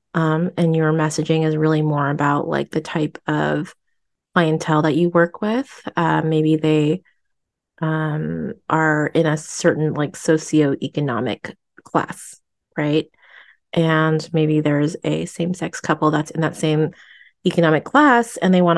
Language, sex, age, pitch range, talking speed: English, female, 30-49, 155-175 Hz, 140 wpm